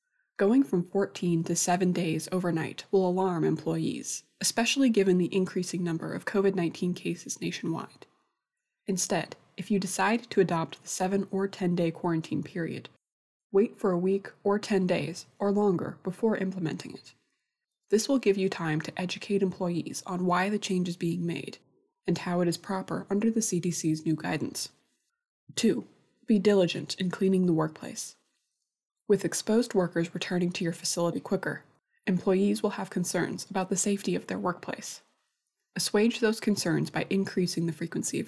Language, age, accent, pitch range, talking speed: English, 20-39, American, 175-205 Hz, 160 wpm